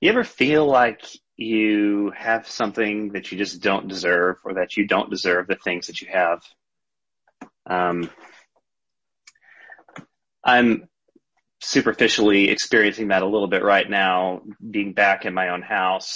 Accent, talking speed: American, 140 wpm